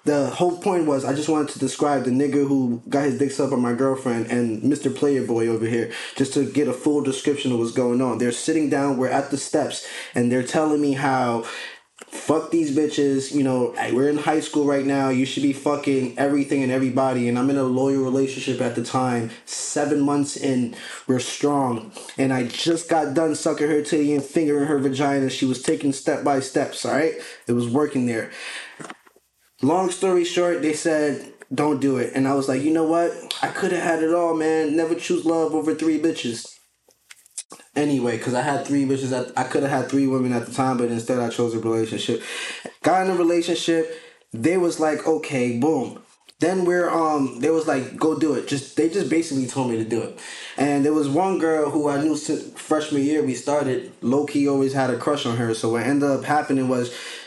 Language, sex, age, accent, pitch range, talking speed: English, male, 20-39, American, 130-155 Hz, 215 wpm